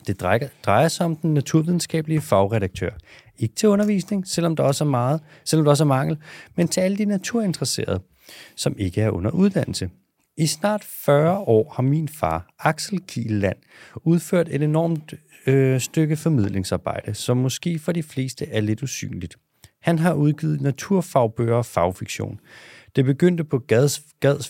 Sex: male